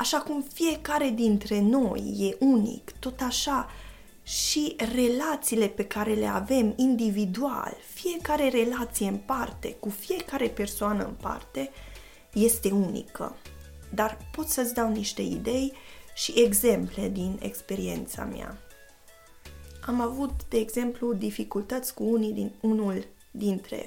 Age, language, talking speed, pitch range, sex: 20-39, Romanian, 120 wpm, 195-255 Hz, female